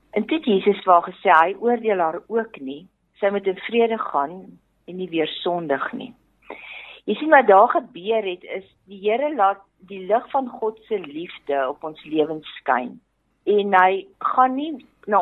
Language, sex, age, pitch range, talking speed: English, female, 50-69, 180-255 Hz, 175 wpm